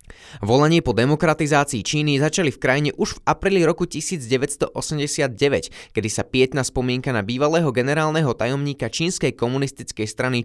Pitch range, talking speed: 115-160 Hz, 130 wpm